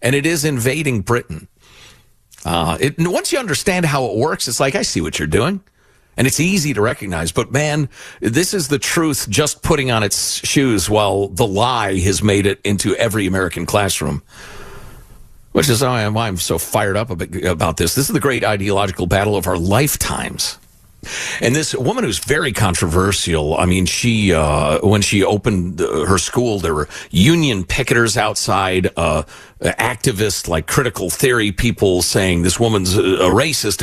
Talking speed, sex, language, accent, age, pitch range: 165 wpm, male, English, American, 50-69, 95-145 Hz